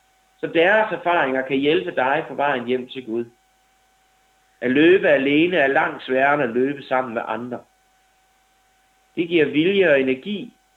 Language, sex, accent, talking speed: Danish, male, native, 155 wpm